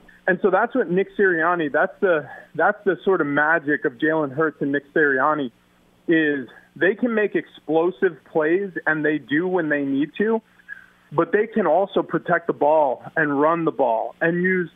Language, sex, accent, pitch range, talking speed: English, male, American, 150-180 Hz, 185 wpm